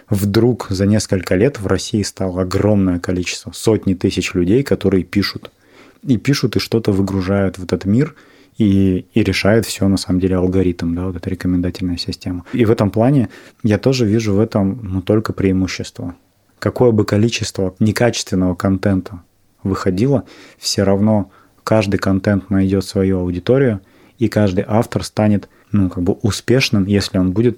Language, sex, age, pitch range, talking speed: Russian, male, 30-49, 95-110 Hz, 150 wpm